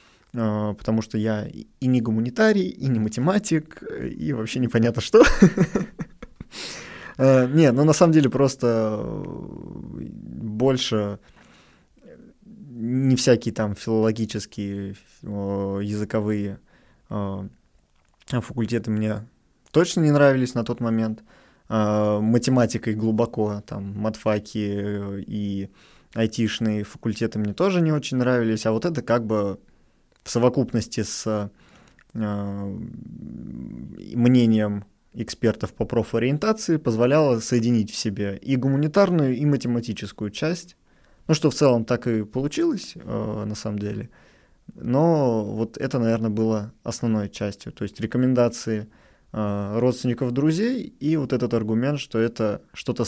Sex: male